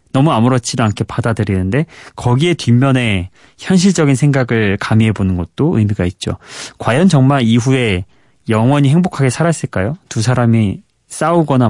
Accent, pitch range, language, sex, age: native, 110-145 Hz, Korean, male, 30-49